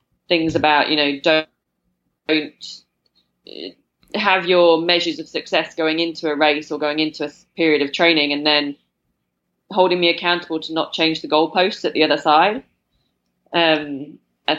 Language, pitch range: English, 145-180 Hz